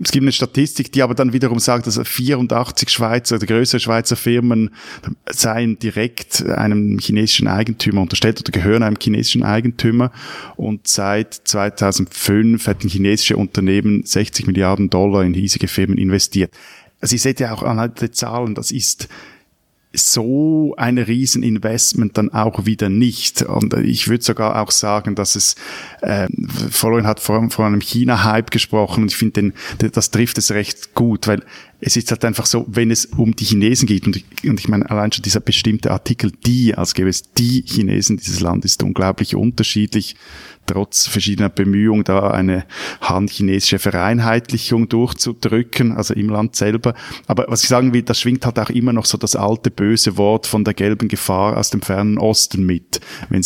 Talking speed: 170 wpm